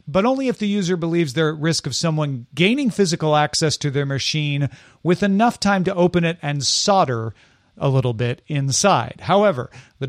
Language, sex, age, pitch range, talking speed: English, male, 40-59, 135-185 Hz, 185 wpm